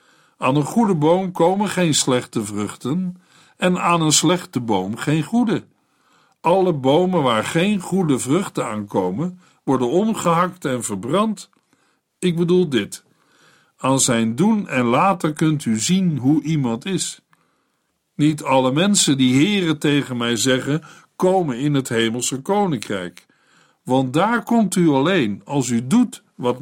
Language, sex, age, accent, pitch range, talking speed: Dutch, male, 60-79, Dutch, 130-180 Hz, 140 wpm